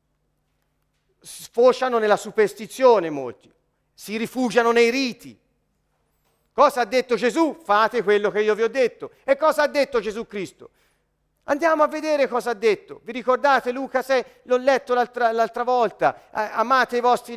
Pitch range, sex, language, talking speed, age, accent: 230-285 Hz, male, Italian, 150 wpm, 40-59, native